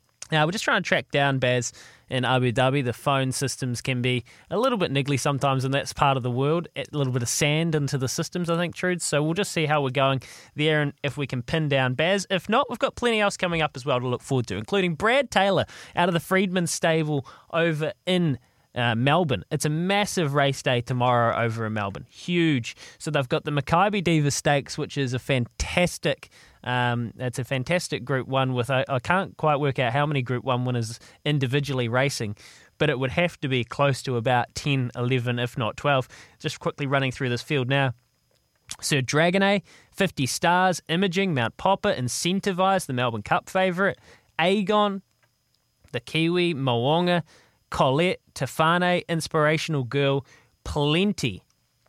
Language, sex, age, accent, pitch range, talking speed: English, male, 20-39, Australian, 125-170 Hz, 185 wpm